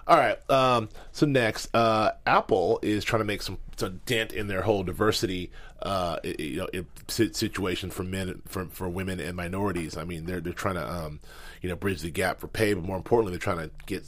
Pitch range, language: 90-110 Hz, English